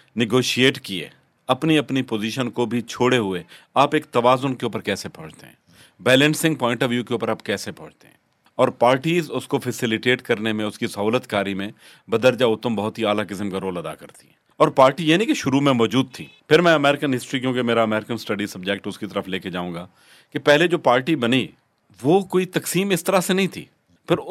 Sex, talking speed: male, 215 wpm